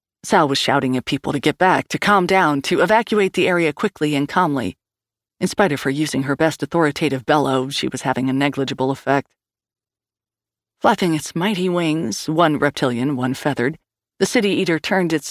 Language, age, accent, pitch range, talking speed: English, 40-59, American, 135-170 Hz, 180 wpm